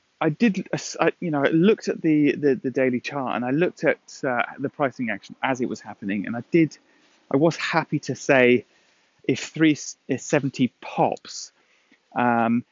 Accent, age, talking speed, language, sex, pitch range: British, 30-49, 170 wpm, English, male, 110-130 Hz